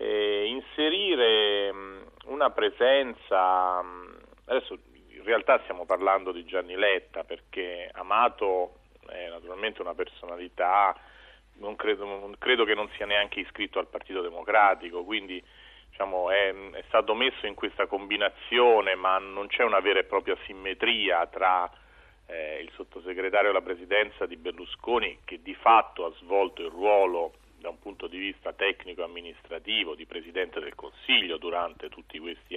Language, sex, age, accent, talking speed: Italian, male, 40-59, native, 140 wpm